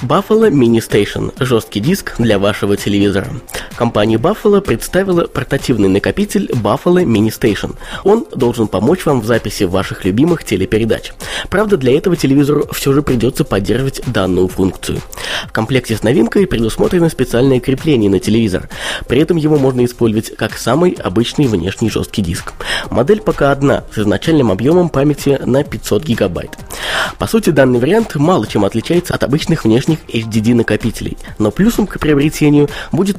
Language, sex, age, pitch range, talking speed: Russian, male, 20-39, 110-155 Hz, 150 wpm